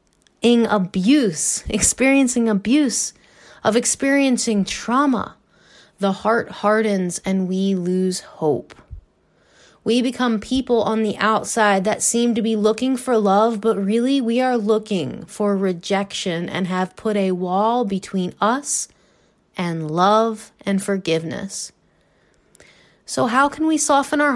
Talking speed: 125 wpm